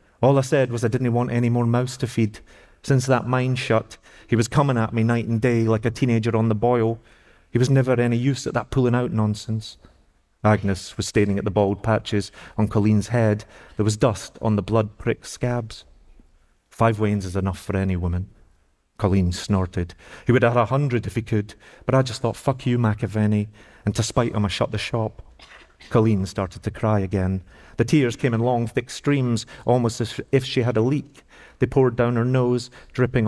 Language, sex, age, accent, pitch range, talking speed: English, male, 30-49, British, 105-125 Hz, 205 wpm